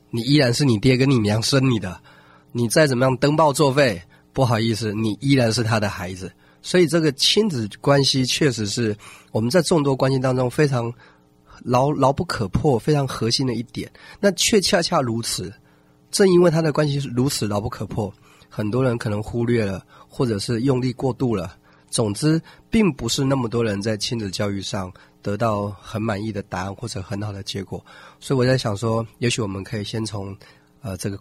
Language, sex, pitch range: Chinese, male, 105-135 Hz